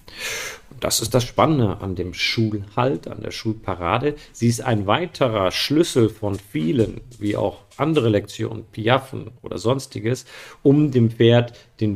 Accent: German